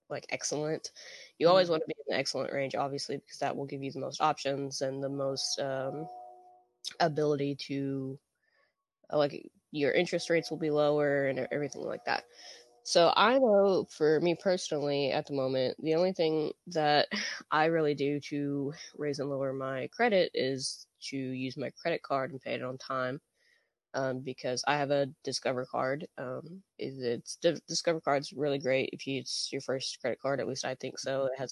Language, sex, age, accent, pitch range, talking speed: English, female, 10-29, American, 135-160 Hz, 190 wpm